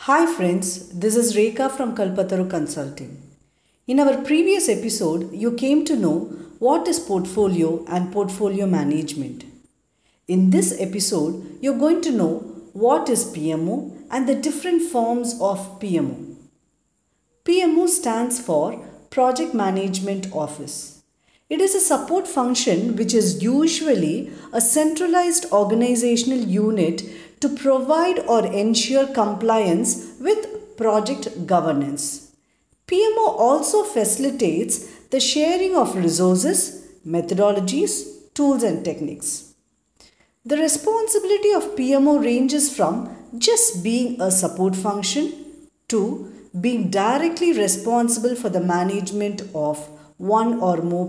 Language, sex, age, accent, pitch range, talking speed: English, female, 50-69, Indian, 185-290 Hz, 115 wpm